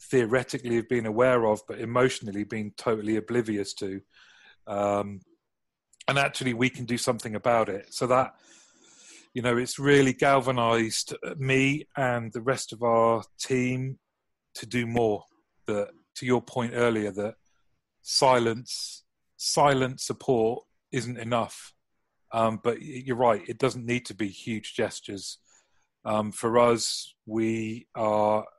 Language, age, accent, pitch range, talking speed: English, 30-49, British, 110-125 Hz, 135 wpm